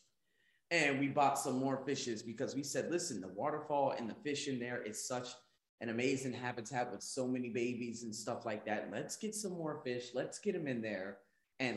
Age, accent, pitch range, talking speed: 20-39, American, 115-130 Hz, 210 wpm